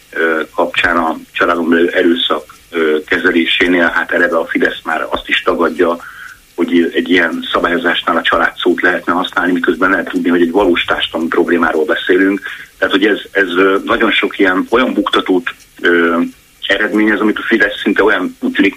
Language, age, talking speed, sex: Hungarian, 30-49, 145 wpm, male